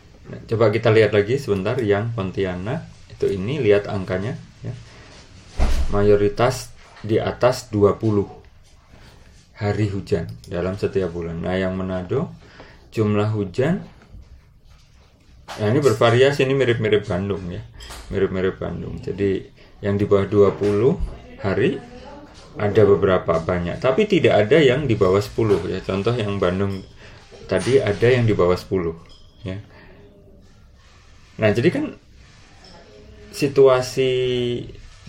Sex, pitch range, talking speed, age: male, 95-115 Hz, 110 wpm, 30-49